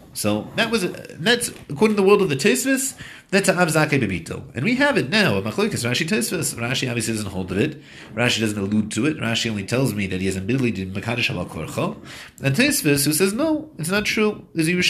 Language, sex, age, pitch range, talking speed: English, male, 30-49, 105-160 Hz, 210 wpm